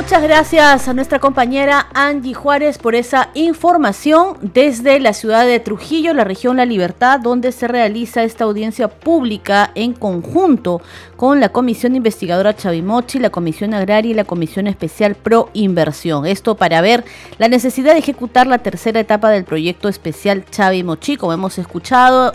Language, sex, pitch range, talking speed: Spanish, female, 190-255 Hz, 155 wpm